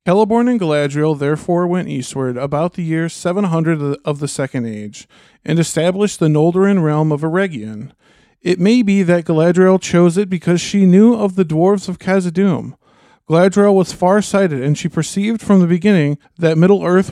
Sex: male